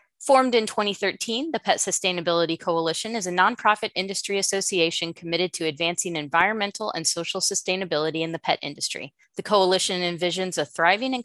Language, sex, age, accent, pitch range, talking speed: English, female, 30-49, American, 165-210 Hz, 155 wpm